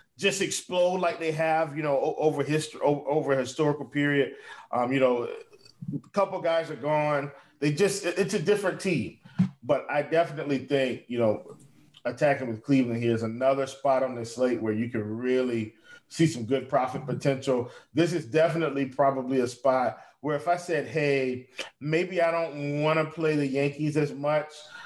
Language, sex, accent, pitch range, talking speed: English, male, American, 130-155 Hz, 175 wpm